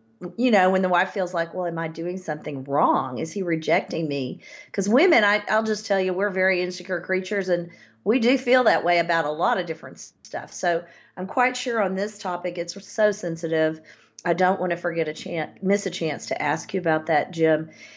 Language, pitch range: English, 175-225 Hz